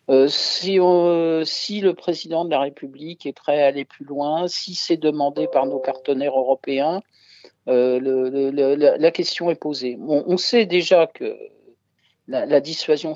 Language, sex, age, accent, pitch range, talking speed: French, male, 50-69, French, 135-170 Hz, 175 wpm